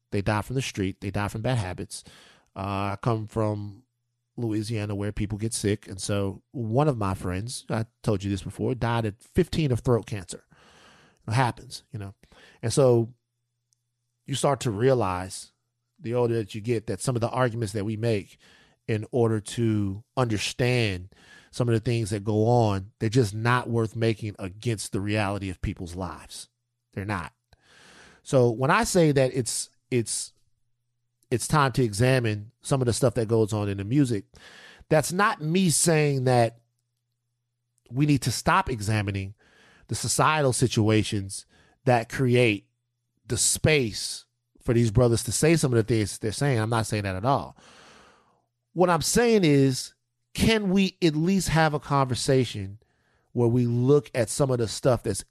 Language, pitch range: English, 105-130 Hz